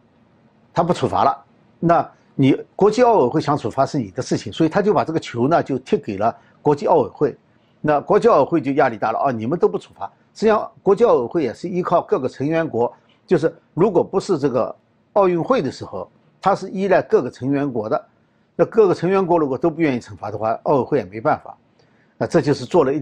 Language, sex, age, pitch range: Chinese, male, 60-79, 130-200 Hz